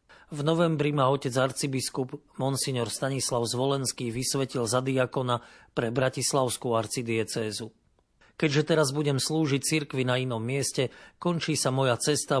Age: 40-59